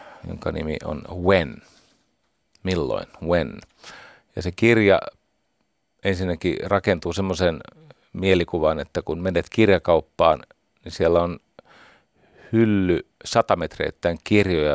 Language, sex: Finnish, male